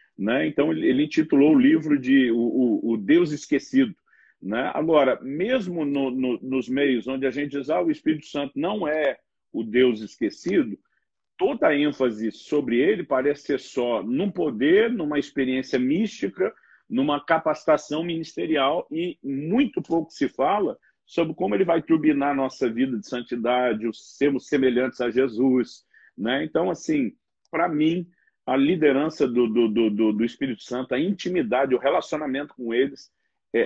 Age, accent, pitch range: 50-69, Brazilian, 130-180 Hz